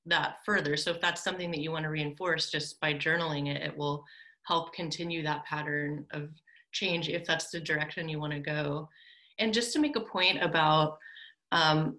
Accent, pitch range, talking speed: American, 150-180 Hz, 195 wpm